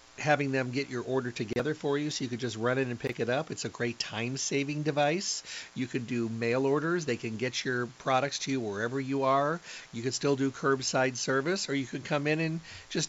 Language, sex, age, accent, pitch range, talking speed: English, male, 50-69, American, 120-140 Hz, 240 wpm